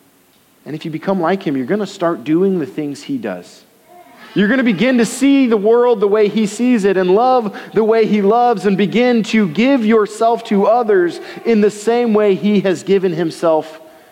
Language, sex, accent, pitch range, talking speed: English, male, American, 160-220 Hz, 210 wpm